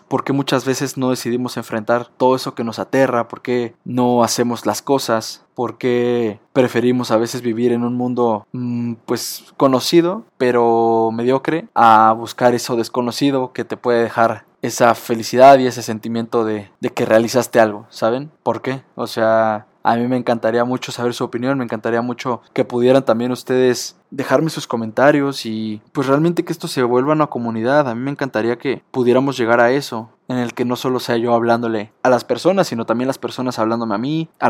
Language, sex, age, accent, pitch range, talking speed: Spanish, male, 20-39, Mexican, 115-135 Hz, 190 wpm